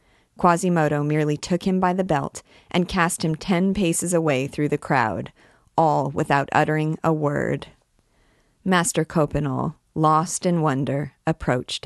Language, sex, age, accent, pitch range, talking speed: English, female, 40-59, American, 135-165 Hz, 135 wpm